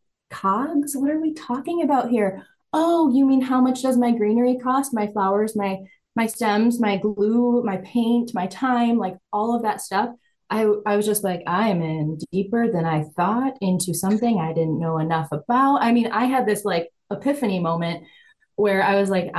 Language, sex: English, female